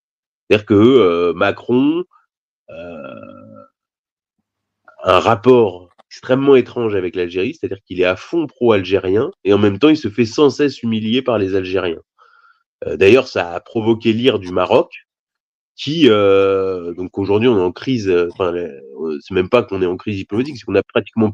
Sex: male